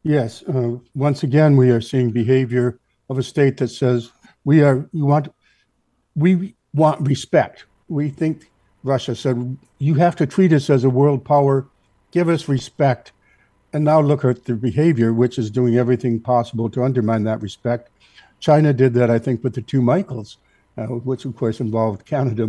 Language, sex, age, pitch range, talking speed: English, male, 60-79, 120-145 Hz, 175 wpm